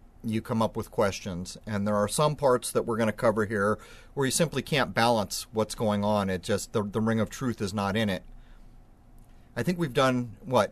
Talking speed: 225 wpm